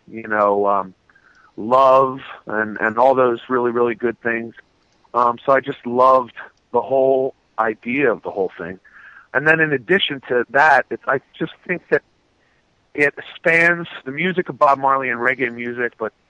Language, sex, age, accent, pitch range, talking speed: English, male, 40-59, American, 120-165 Hz, 170 wpm